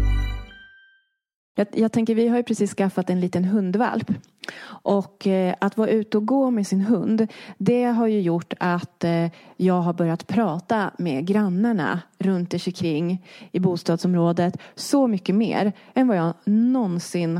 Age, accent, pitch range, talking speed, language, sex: 30-49, Swedish, 170-215 Hz, 145 wpm, English, female